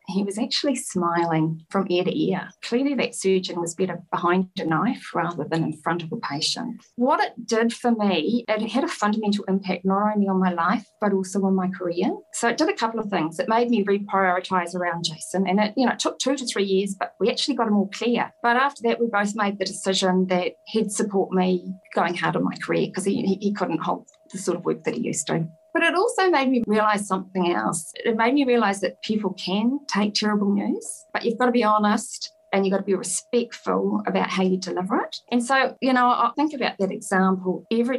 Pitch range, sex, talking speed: 185-240 Hz, female, 230 wpm